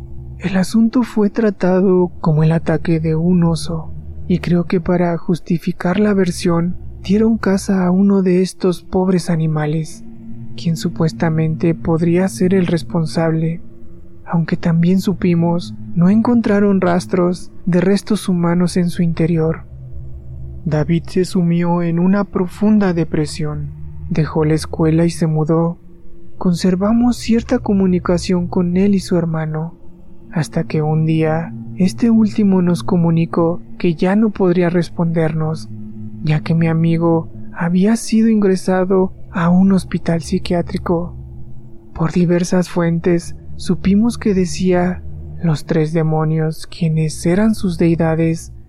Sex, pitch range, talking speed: male, 160-185 Hz, 125 wpm